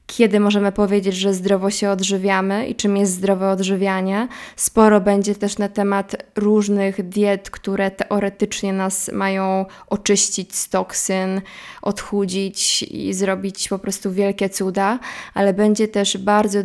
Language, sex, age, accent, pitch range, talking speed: Polish, female, 20-39, native, 195-205 Hz, 135 wpm